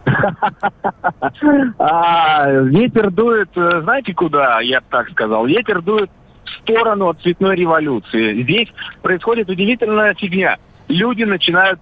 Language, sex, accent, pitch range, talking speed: Russian, male, native, 150-195 Hz, 100 wpm